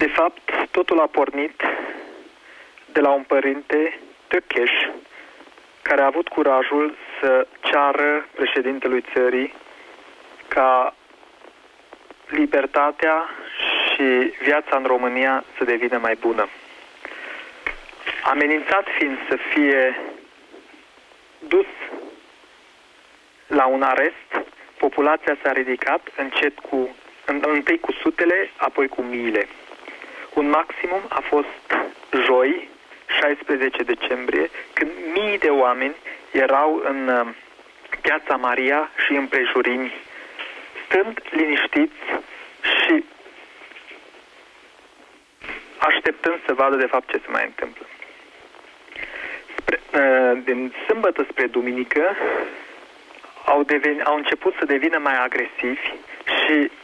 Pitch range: 130-155 Hz